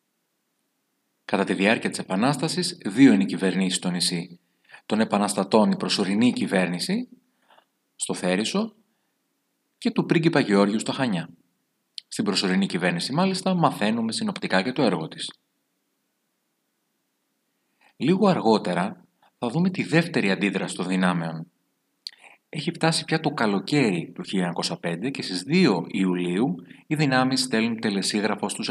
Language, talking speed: Greek, 125 wpm